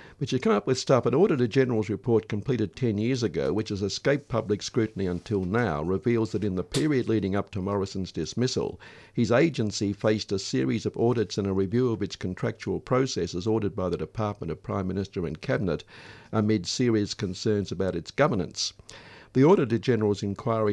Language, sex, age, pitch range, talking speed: English, male, 50-69, 95-120 Hz, 180 wpm